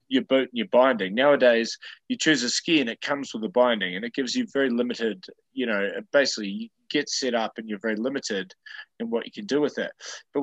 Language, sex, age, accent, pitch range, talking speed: English, male, 20-39, Australian, 115-145 Hz, 235 wpm